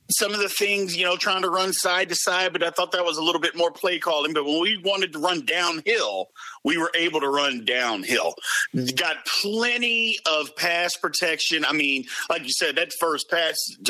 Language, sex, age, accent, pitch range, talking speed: English, male, 40-59, American, 170-255 Hz, 210 wpm